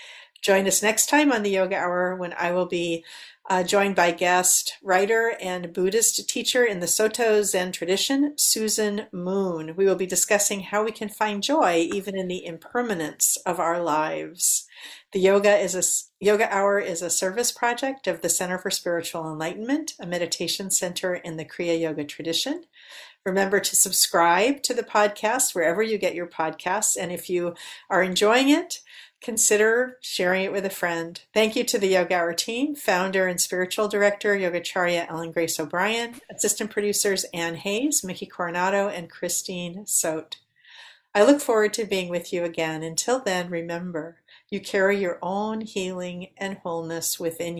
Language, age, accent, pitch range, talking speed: English, 50-69, American, 175-215 Hz, 165 wpm